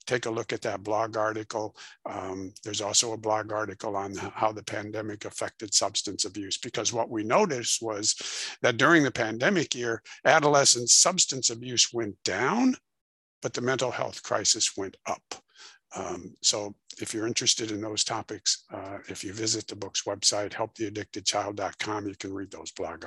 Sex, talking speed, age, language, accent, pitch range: male, 165 wpm, 60-79, English, American, 105-130 Hz